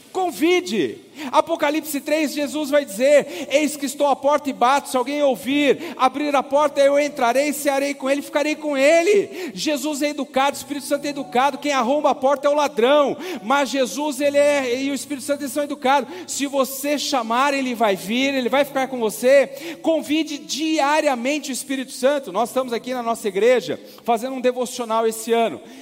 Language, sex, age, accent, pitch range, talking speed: Portuguese, male, 40-59, Brazilian, 245-290 Hz, 185 wpm